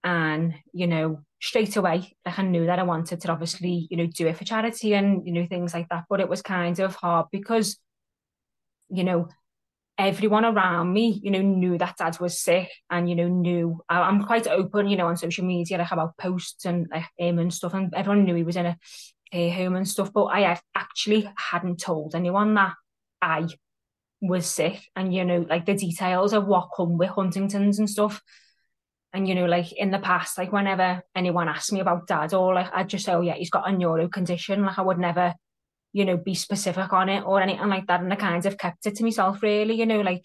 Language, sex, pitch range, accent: English, female, 175-195 Hz, British